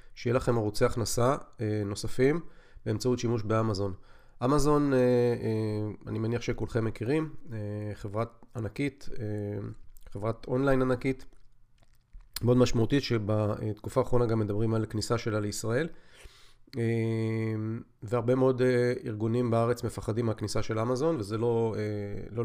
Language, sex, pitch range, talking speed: Hebrew, male, 110-125 Hz, 95 wpm